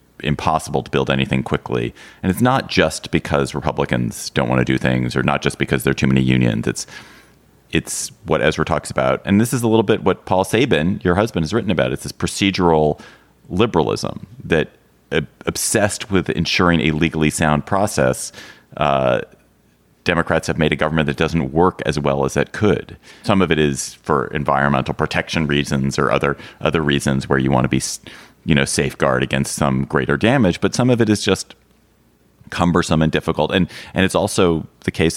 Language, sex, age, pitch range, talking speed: English, male, 30-49, 65-80 Hz, 190 wpm